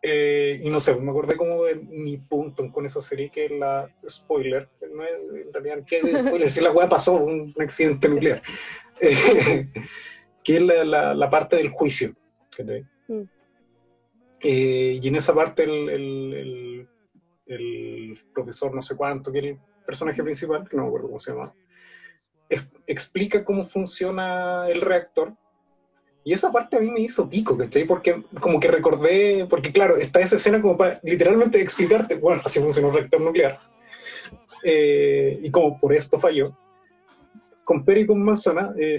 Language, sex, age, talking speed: Spanish, male, 30-49, 165 wpm